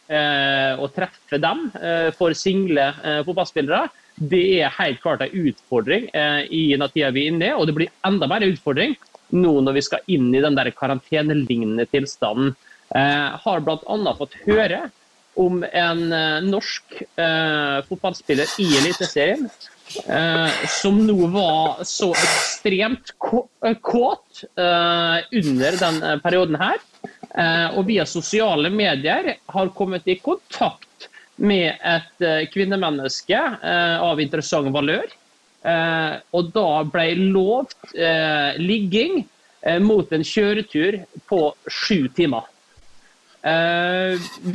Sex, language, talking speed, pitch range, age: male, English, 125 wpm, 155-195 Hz, 30-49